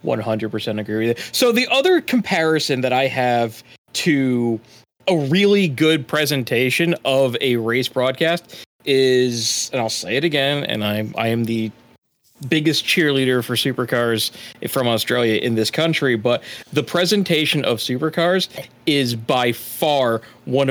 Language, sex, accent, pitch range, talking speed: English, male, American, 130-185 Hz, 135 wpm